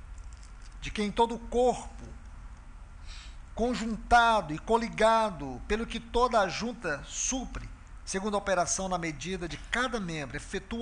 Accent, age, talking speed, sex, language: Brazilian, 50-69, 130 wpm, male, Portuguese